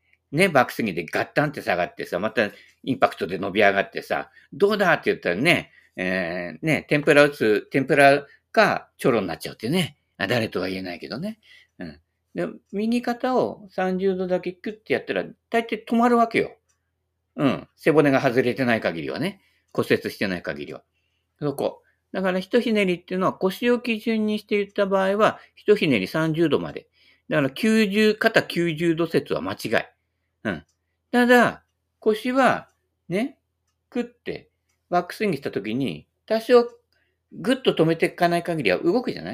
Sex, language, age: male, Japanese, 50-69